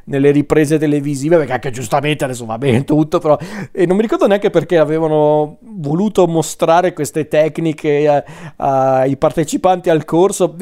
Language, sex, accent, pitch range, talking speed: Italian, male, native, 135-175 Hz, 145 wpm